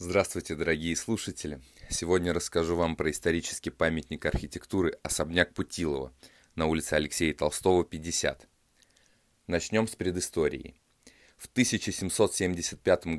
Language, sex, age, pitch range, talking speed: Russian, male, 20-39, 80-100 Hz, 100 wpm